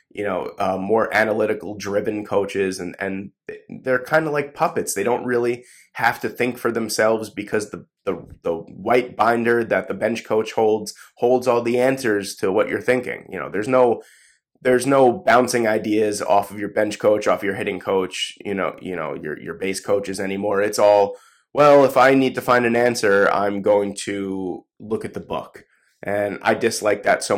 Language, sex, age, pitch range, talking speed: English, male, 20-39, 100-120 Hz, 195 wpm